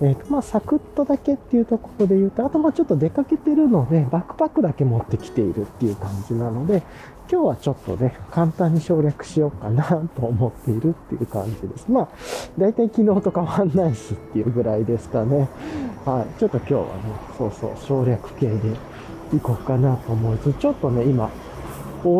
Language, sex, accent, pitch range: Japanese, male, native, 120-180 Hz